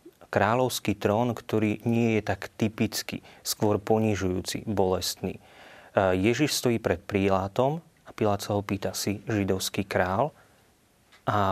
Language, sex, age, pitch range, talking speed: Slovak, male, 30-49, 95-115 Hz, 120 wpm